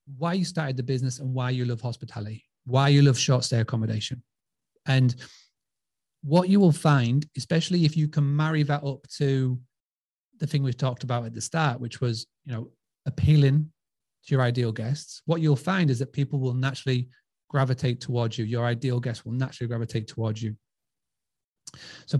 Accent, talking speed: British, 180 wpm